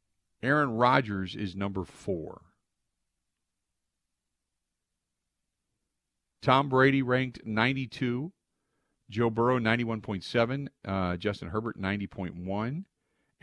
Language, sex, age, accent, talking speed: English, male, 50-69, American, 65 wpm